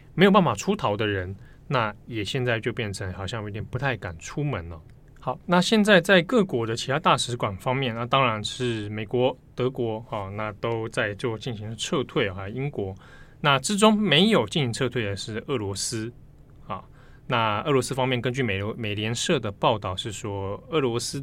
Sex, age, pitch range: male, 20-39, 105-135 Hz